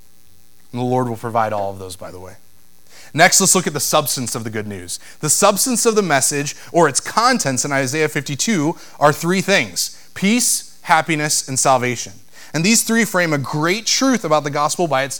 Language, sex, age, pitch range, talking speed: English, male, 30-49, 125-185 Hz, 200 wpm